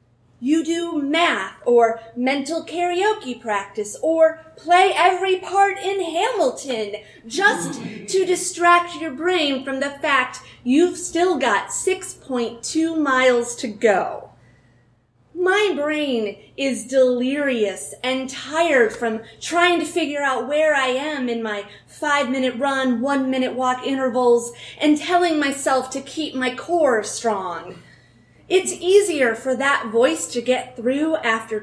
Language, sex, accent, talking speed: English, female, American, 125 wpm